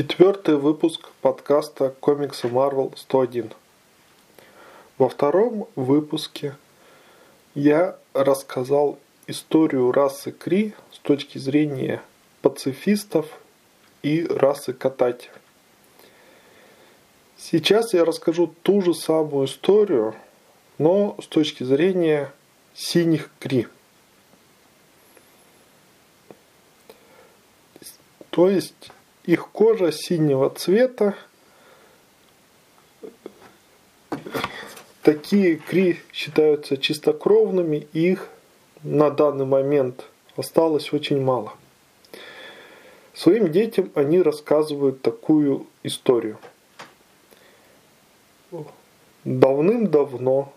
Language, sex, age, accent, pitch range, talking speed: Russian, male, 20-39, native, 135-180 Hz, 70 wpm